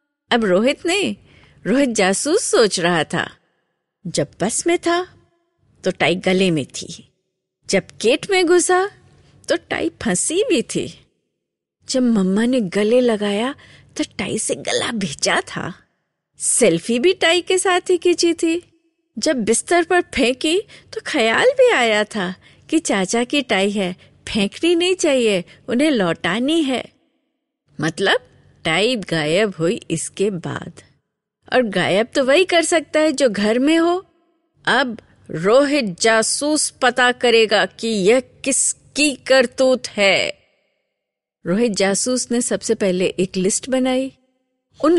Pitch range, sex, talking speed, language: 205-310 Hz, female, 135 wpm, Hindi